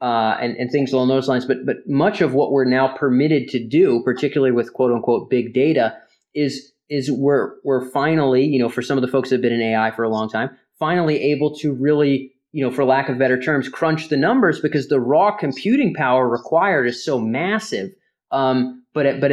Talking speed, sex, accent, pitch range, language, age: 220 wpm, male, American, 125-150 Hz, English, 20-39